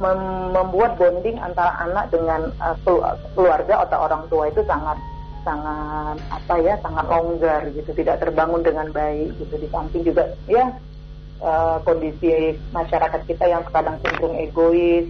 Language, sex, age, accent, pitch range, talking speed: Indonesian, female, 30-49, native, 160-195 Hz, 145 wpm